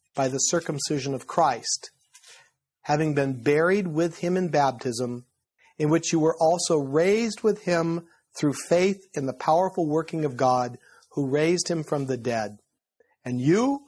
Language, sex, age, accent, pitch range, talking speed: English, male, 50-69, American, 130-170 Hz, 155 wpm